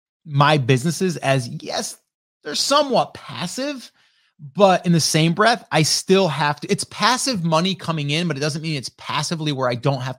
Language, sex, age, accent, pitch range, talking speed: English, male, 30-49, American, 130-175 Hz, 185 wpm